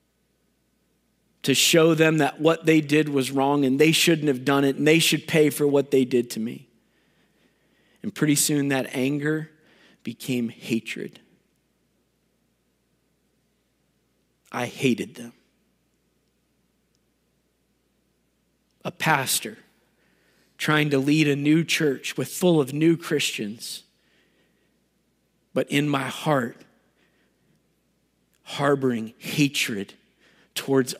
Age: 50-69